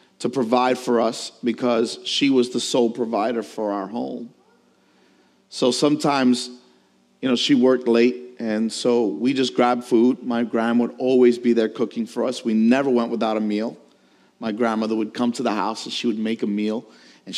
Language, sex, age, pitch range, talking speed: English, male, 40-59, 115-140 Hz, 190 wpm